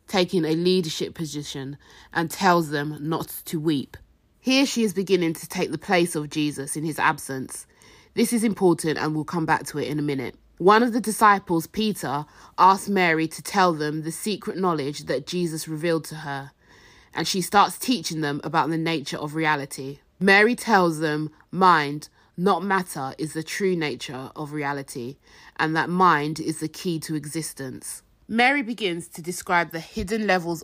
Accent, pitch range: British, 150-185 Hz